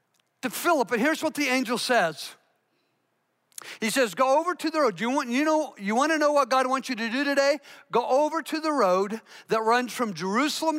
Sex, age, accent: male, 50-69, American